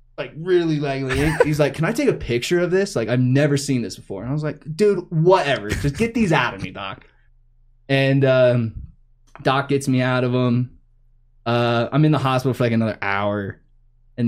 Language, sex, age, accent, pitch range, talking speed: English, male, 20-39, American, 115-135 Hz, 205 wpm